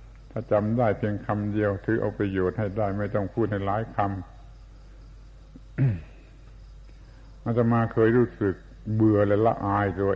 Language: Thai